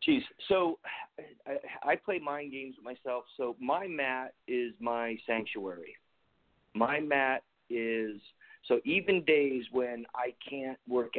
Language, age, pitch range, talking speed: English, 40-59, 110-150 Hz, 135 wpm